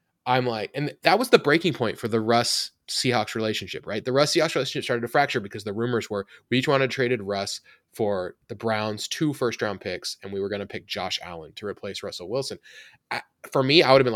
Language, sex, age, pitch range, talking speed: English, male, 20-39, 110-135 Hz, 230 wpm